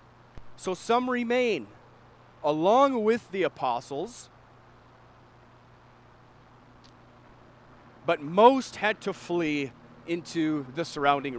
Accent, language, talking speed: American, English, 80 wpm